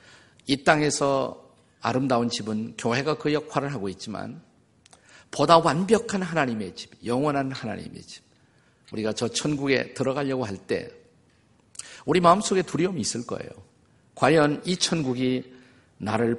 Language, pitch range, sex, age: Korean, 130-170 Hz, male, 50-69